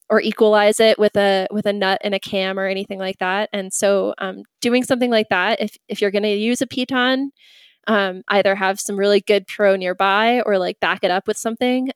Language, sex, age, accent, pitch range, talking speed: English, female, 20-39, American, 195-235 Hz, 225 wpm